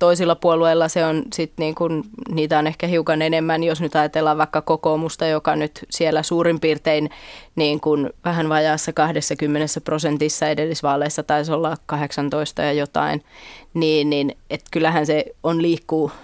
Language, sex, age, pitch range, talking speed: Finnish, female, 20-39, 155-170 Hz, 150 wpm